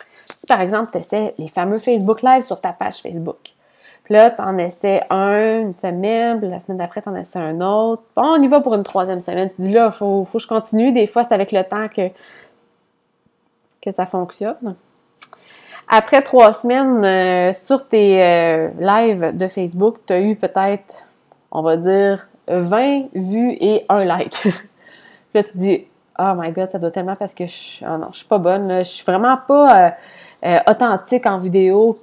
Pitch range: 185-230 Hz